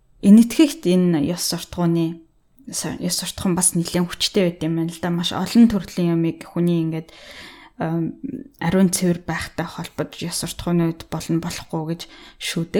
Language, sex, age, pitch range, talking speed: Russian, female, 20-39, 170-195 Hz, 45 wpm